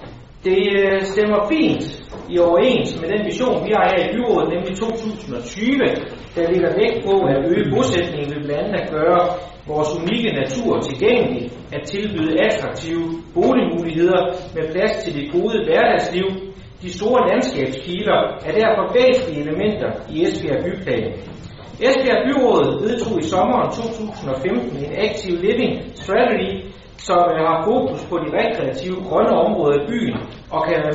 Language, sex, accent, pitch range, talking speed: Danish, male, native, 150-220 Hz, 145 wpm